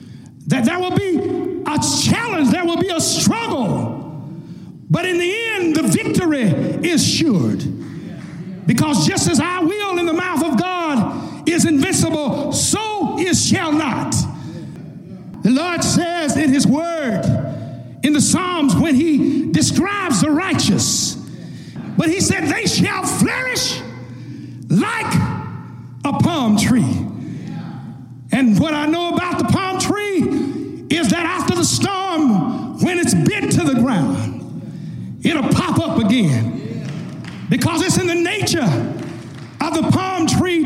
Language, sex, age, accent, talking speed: English, male, 50-69, American, 135 wpm